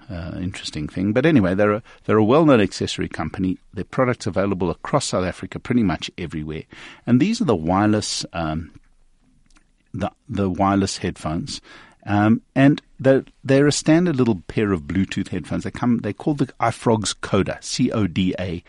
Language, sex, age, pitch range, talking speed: English, male, 50-69, 90-125 Hz, 155 wpm